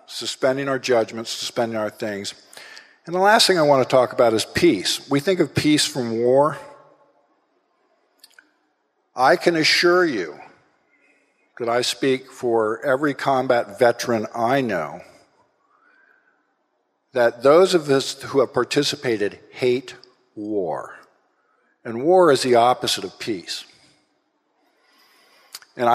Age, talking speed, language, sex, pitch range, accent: 50-69, 125 wpm, English, male, 115-140 Hz, American